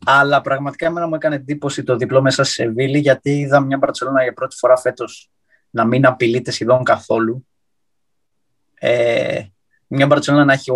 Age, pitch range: 20-39, 120-155 Hz